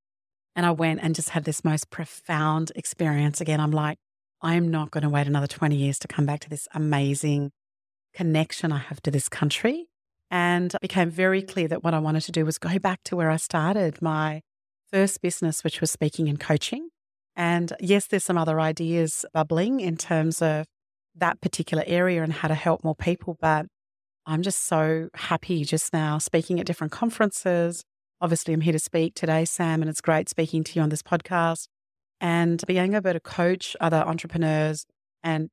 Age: 40-59